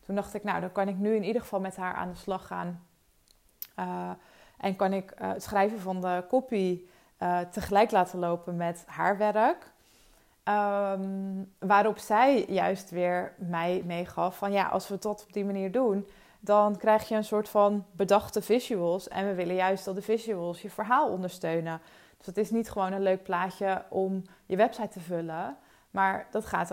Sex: female